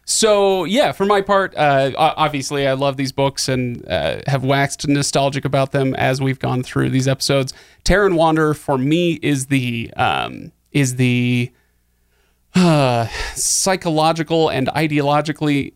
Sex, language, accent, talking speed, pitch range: male, English, American, 140 wpm, 130-150 Hz